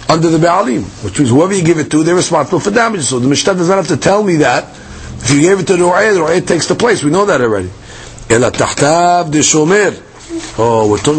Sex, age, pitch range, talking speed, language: male, 50-69, 140-195 Hz, 225 wpm, English